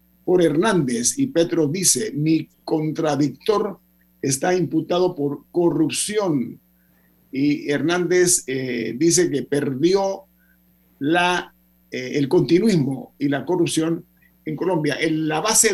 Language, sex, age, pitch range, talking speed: Spanish, male, 50-69, 125-170 Hz, 105 wpm